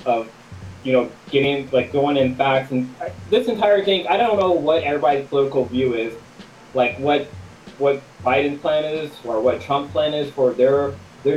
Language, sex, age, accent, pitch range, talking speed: English, male, 20-39, American, 125-180 Hz, 185 wpm